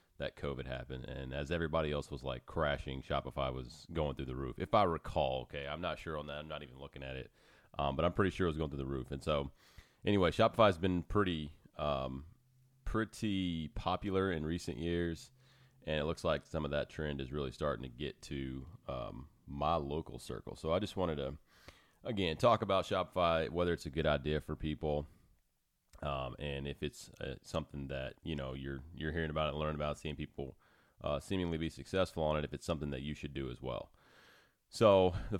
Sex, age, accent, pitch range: male, 30-49, American, 70-85 Hz